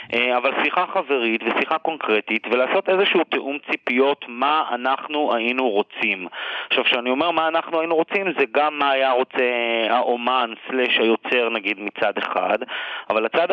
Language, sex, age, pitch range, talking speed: English, male, 40-59, 120-160 Hz, 140 wpm